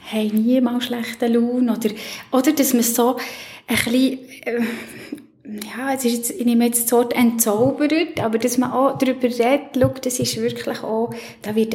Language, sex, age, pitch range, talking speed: German, female, 20-39, 220-250 Hz, 180 wpm